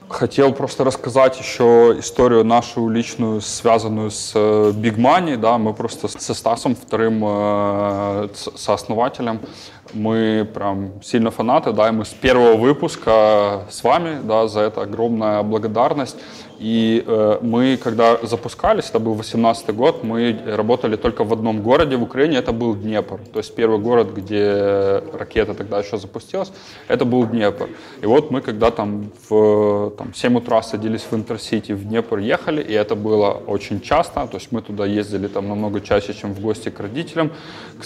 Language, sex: Russian, male